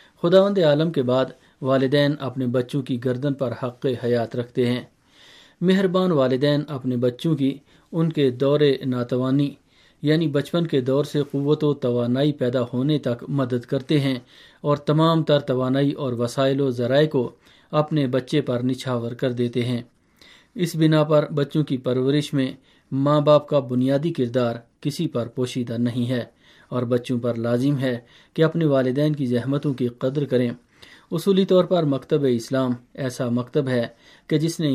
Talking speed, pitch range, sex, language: 160 wpm, 125-145 Hz, male, Urdu